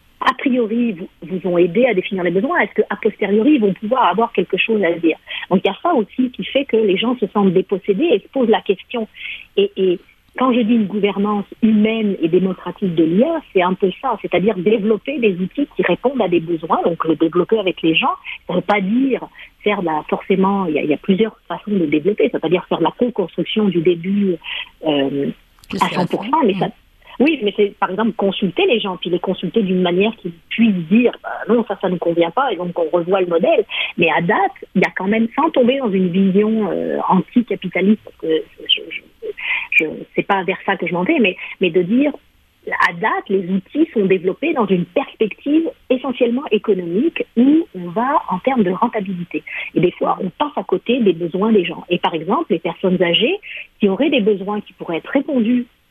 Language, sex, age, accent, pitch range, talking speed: French, female, 50-69, French, 180-235 Hz, 220 wpm